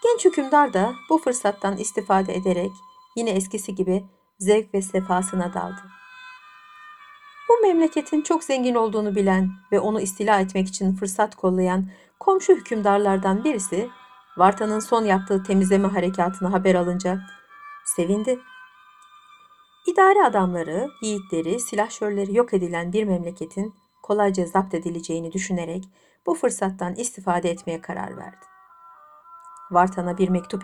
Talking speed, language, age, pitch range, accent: 115 wpm, Turkish, 60-79, 180-240 Hz, native